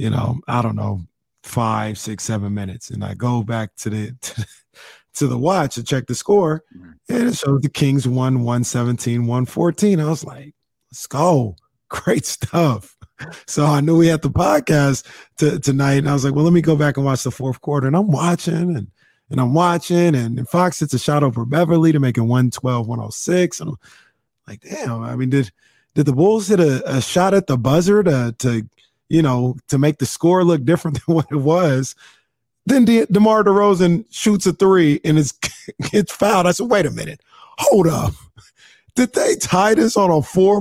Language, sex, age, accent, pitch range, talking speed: English, male, 30-49, American, 120-170 Hz, 200 wpm